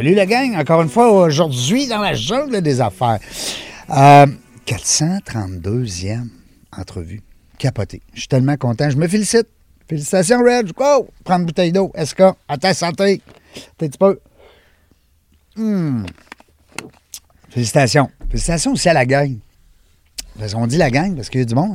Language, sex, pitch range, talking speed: French, male, 105-155 Hz, 150 wpm